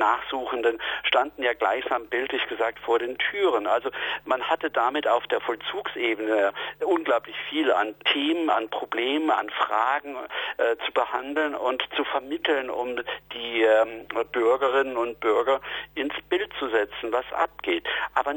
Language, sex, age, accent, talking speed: German, male, 50-69, German, 140 wpm